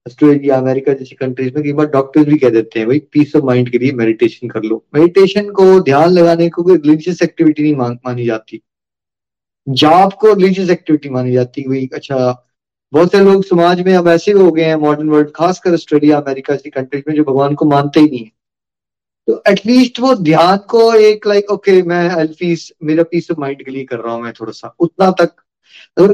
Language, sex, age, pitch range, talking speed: Hindi, male, 30-49, 140-190 Hz, 120 wpm